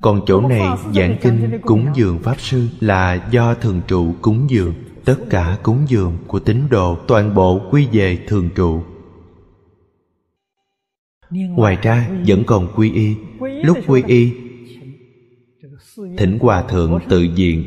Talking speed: 145 wpm